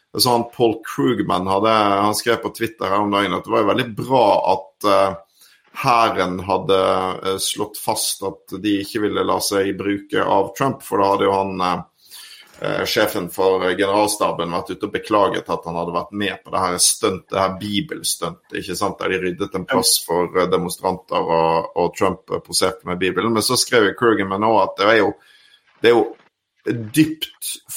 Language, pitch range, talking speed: English, 95-115 Hz, 170 wpm